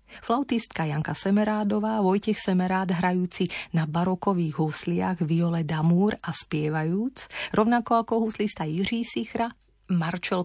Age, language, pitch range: 30-49, Slovak, 165-205 Hz